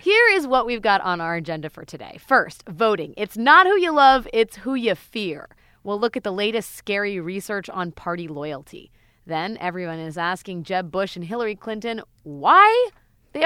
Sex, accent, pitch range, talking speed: female, American, 170-235 Hz, 185 wpm